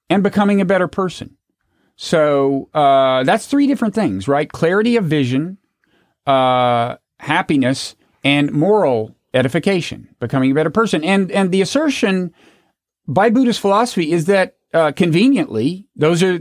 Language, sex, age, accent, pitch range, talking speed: English, male, 50-69, American, 130-180 Hz, 135 wpm